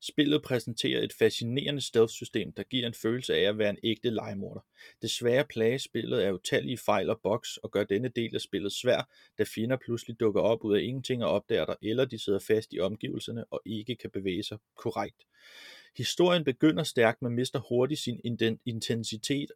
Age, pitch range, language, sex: 30-49, 110-130 Hz, Danish, male